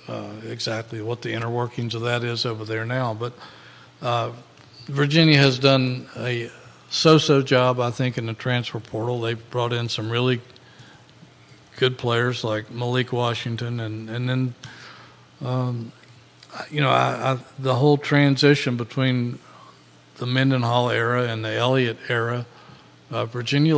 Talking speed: 140 wpm